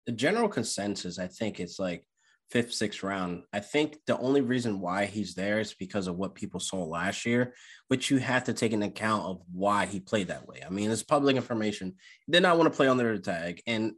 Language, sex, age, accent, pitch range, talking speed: English, male, 20-39, American, 100-130 Hz, 230 wpm